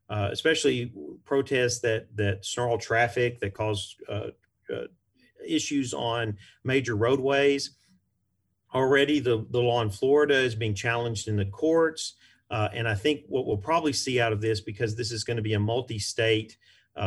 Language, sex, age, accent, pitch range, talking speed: English, male, 40-59, American, 105-125 Hz, 160 wpm